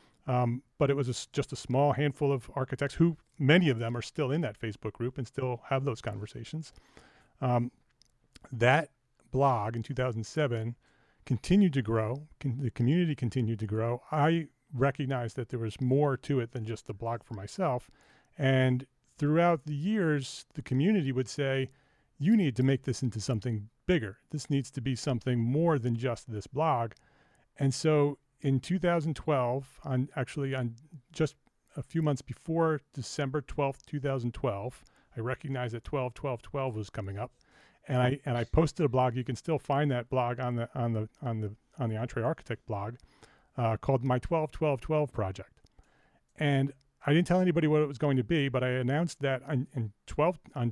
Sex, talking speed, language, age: male, 180 wpm, English, 40-59